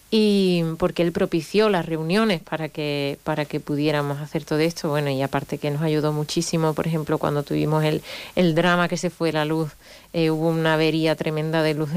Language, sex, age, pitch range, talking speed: Spanish, female, 30-49, 155-185 Hz, 200 wpm